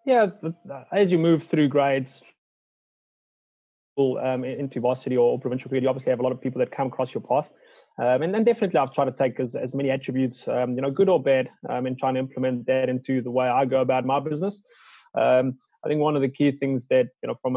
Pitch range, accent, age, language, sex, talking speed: 130-145 Hz, South African, 20-39, English, male, 235 wpm